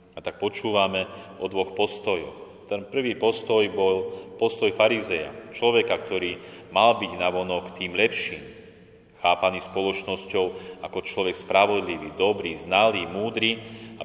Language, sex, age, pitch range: Slovak, male, 30-49, 95-110 Hz